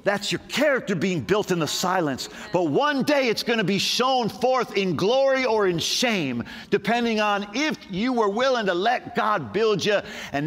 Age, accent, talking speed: 50-69, American, 195 wpm